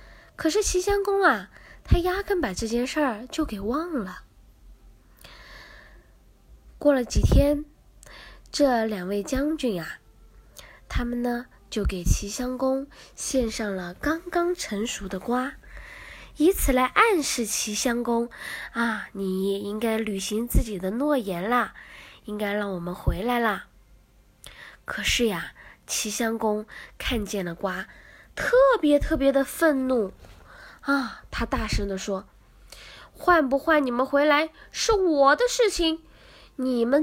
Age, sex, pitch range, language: 10-29, female, 205-290 Hz, Chinese